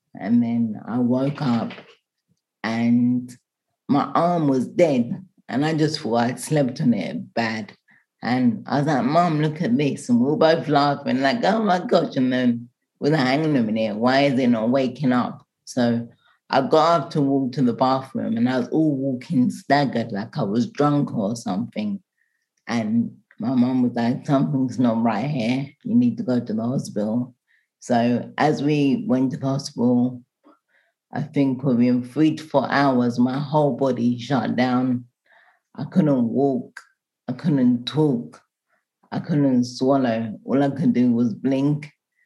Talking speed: 170 wpm